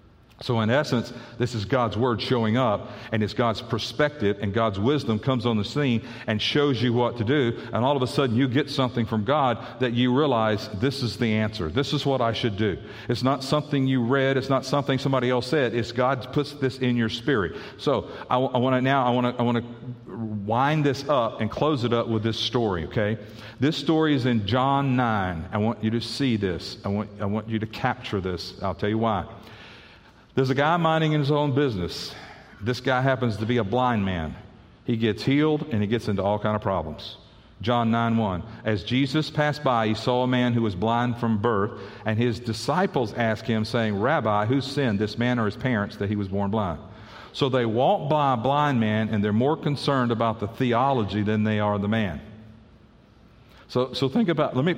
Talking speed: 215 wpm